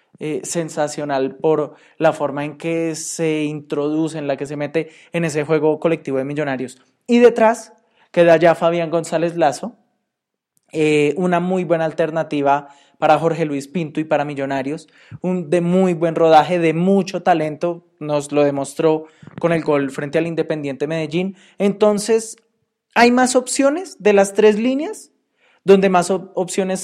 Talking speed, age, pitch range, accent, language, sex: 155 wpm, 20-39, 150-185 Hz, Colombian, Spanish, male